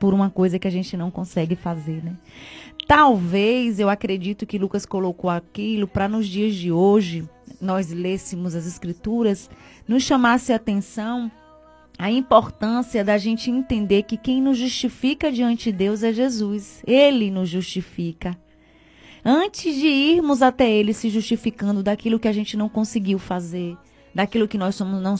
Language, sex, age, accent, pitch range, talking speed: Portuguese, female, 30-49, Brazilian, 195-255 Hz, 155 wpm